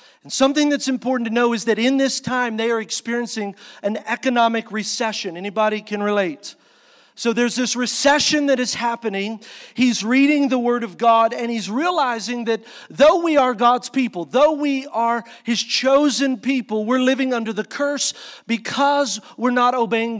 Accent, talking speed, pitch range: American, 170 wpm, 225-260 Hz